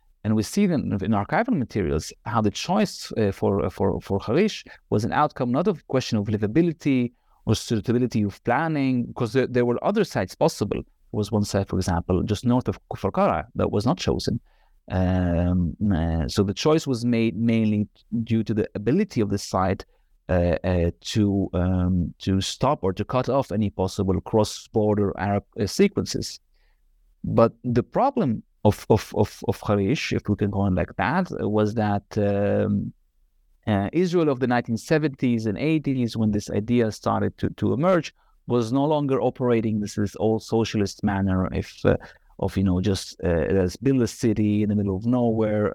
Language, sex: English, male